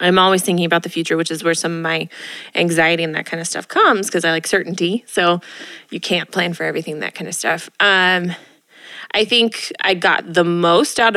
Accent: American